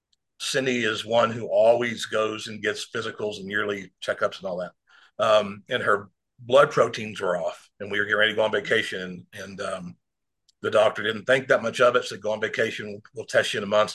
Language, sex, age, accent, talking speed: English, male, 50-69, American, 230 wpm